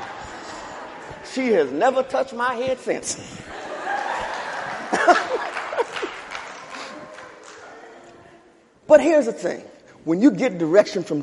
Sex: male